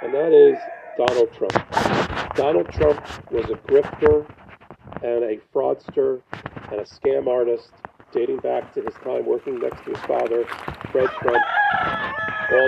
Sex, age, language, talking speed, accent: male, 40-59, English, 140 wpm, American